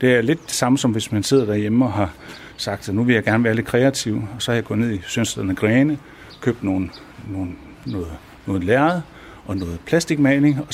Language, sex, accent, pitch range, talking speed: Danish, male, native, 100-130 Hz, 225 wpm